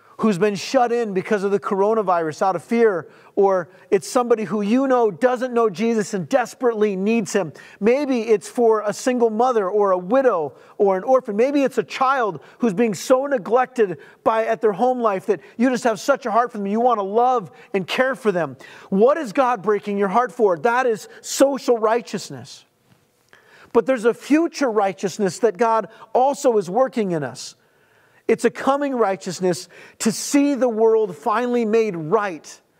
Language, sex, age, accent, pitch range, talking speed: English, male, 40-59, American, 190-235 Hz, 185 wpm